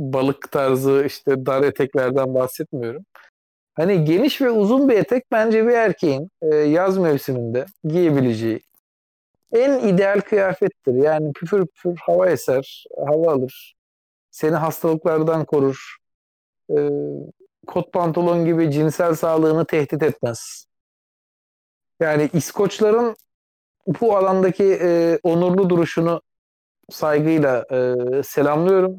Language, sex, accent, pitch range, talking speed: Turkish, male, native, 135-185 Hz, 95 wpm